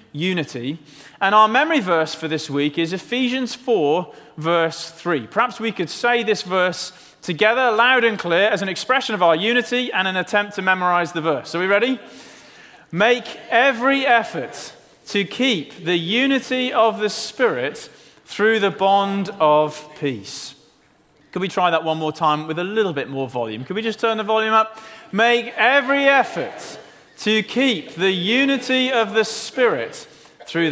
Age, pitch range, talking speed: 30-49, 165-235 Hz, 165 wpm